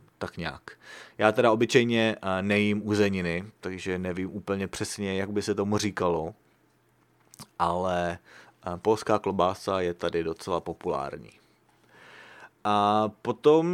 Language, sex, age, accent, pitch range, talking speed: English, male, 30-49, Czech, 90-115 Hz, 110 wpm